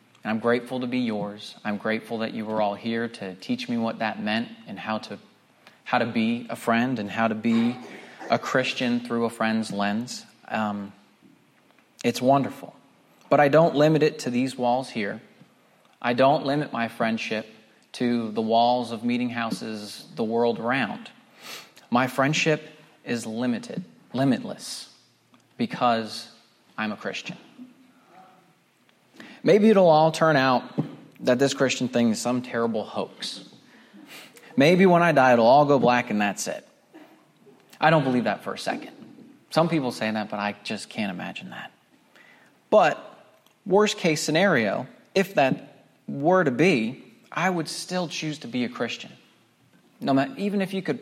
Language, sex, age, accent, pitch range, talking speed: English, male, 30-49, American, 115-160 Hz, 160 wpm